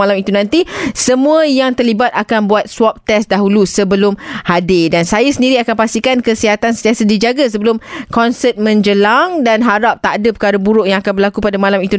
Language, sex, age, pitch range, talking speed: Malay, female, 20-39, 195-250 Hz, 180 wpm